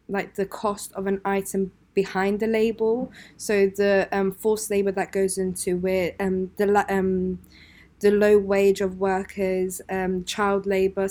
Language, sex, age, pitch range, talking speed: English, female, 20-39, 190-205 Hz, 160 wpm